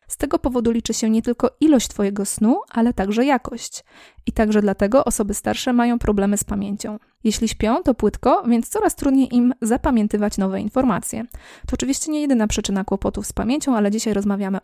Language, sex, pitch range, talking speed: Polish, female, 205-260 Hz, 180 wpm